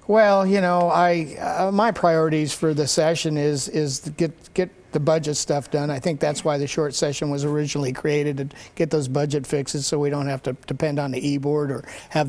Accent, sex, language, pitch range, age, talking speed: American, male, English, 140-165 Hz, 50-69, 220 wpm